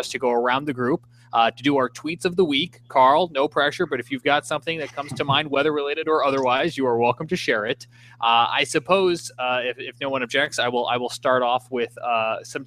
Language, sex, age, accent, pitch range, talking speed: English, male, 20-39, American, 120-140 Hz, 250 wpm